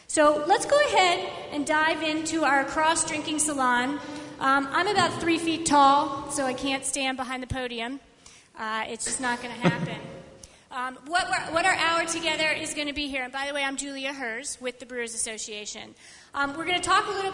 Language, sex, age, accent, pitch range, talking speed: English, female, 30-49, American, 245-315 Hz, 210 wpm